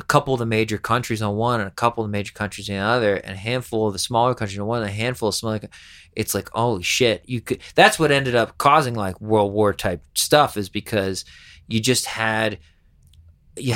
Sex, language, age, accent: male, English, 20-39, American